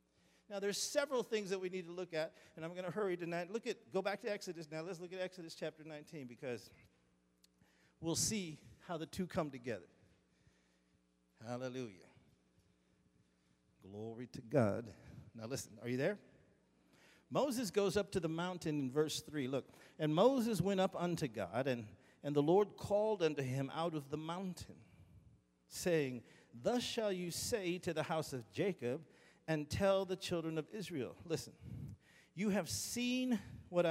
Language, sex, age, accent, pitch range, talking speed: English, male, 50-69, American, 120-190 Hz, 165 wpm